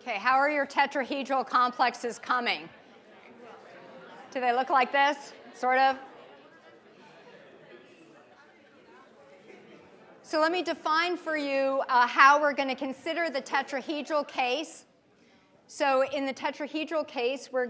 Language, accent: English, American